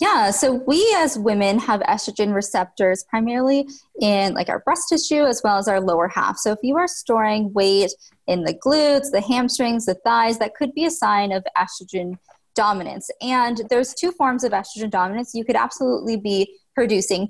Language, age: English, 20-39